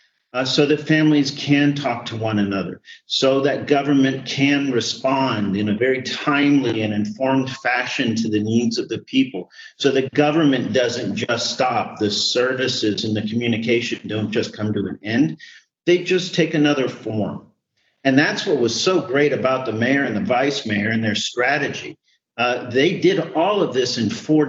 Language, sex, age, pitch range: English, male, 50-69, 115-145 Hz